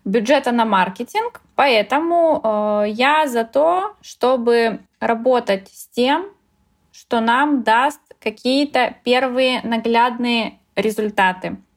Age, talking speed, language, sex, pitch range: 20-39, 95 wpm, Russian, female, 220-260 Hz